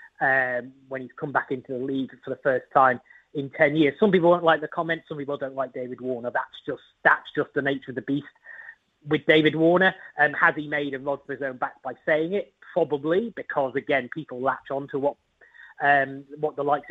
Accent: British